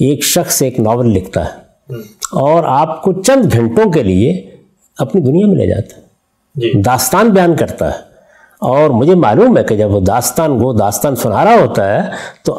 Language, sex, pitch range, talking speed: Urdu, male, 125-195 Hz, 175 wpm